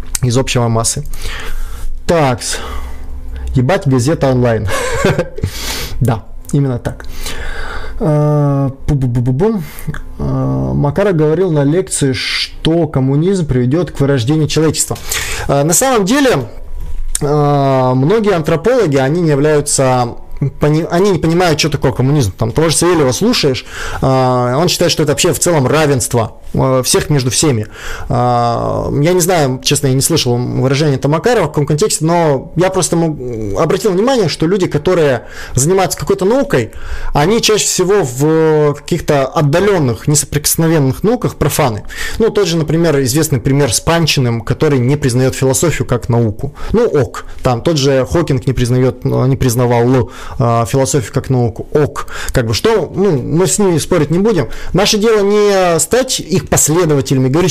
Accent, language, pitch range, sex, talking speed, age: native, Russian, 130-170 Hz, male, 130 wpm, 20-39